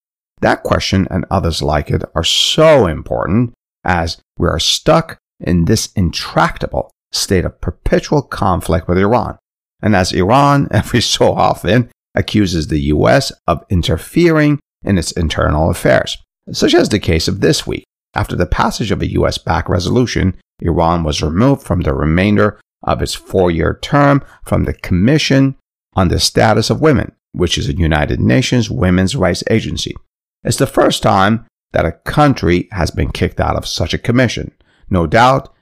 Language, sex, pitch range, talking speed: English, male, 85-125 Hz, 160 wpm